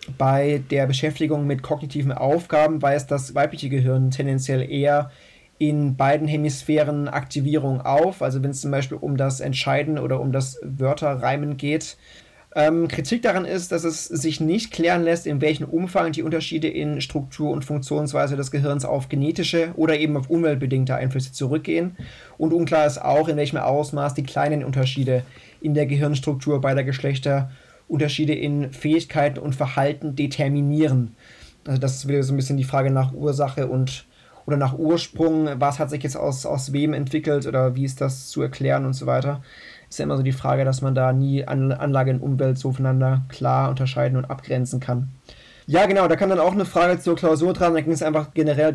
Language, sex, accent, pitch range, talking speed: German, male, German, 135-155 Hz, 180 wpm